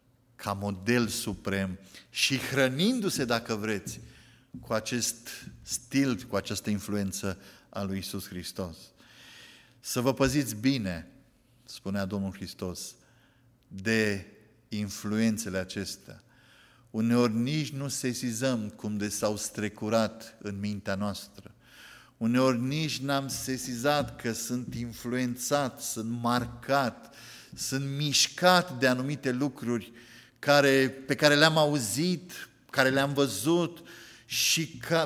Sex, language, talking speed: male, Romanian, 105 wpm